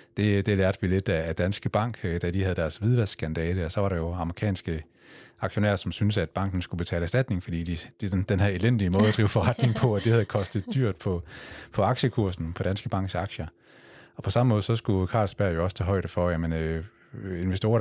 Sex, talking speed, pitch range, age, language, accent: male, 220 wpm, 85-105 Hz, 30-49, Danish, native